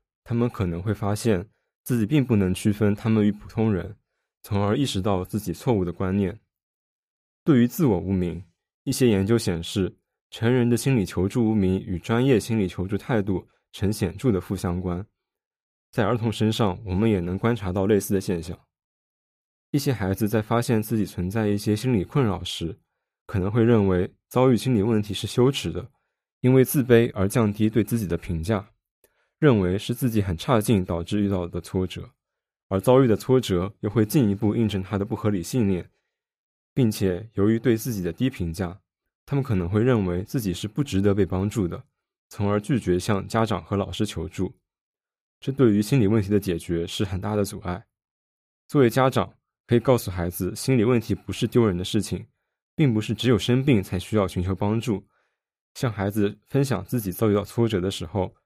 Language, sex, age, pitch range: English, male, 20-39, 95-115 Hz